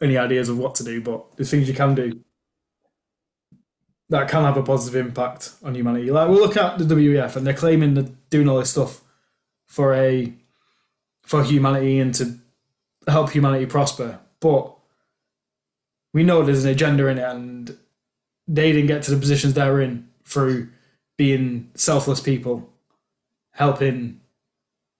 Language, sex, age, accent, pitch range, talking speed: English, male, 20-39, British, 130-150 Hz, 155 wpm